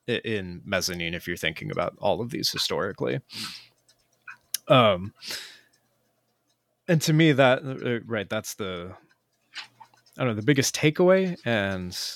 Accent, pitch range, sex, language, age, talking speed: American, 95-125 Hz, male, English, 20-39, 125 wpm